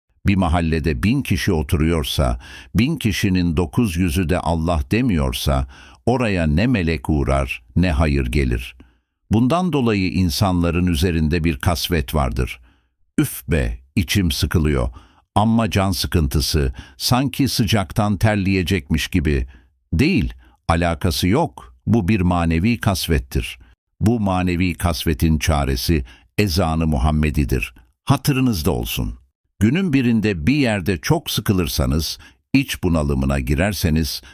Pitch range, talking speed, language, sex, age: 75-100 Hz, 105 wpm, Turkish, male, 60-79